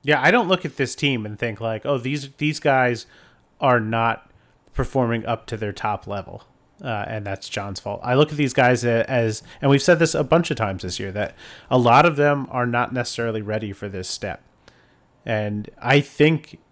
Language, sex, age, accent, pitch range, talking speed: English, male, 30-49, American, 110-140 Hz, 210 wpm